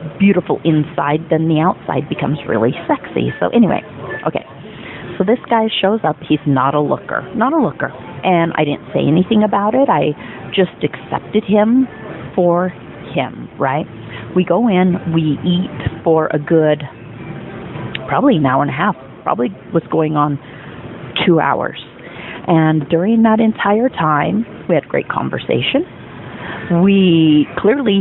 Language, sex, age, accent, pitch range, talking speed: English, female, 40-59, American, 155-205 Hz, 145 wpm